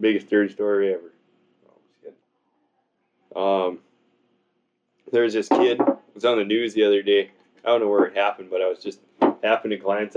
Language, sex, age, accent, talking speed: English, male, 20-39, American, 170 wpm